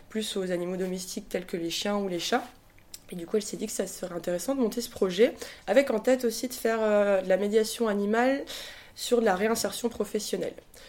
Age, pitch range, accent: 20-39, 180-220 Hz, French